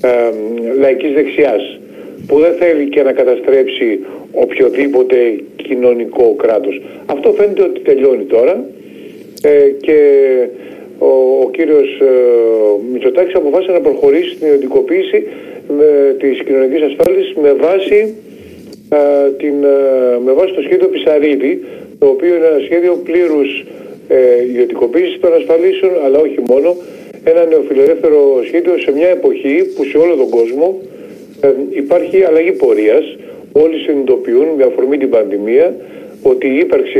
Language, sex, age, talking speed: Greek, male, 50-69, 125 wpm